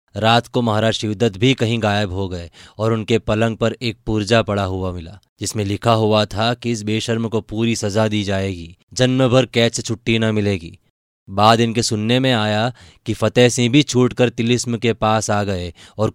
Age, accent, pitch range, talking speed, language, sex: 20-39, native, 95-115 Hz, 195 wpm, Hindi, male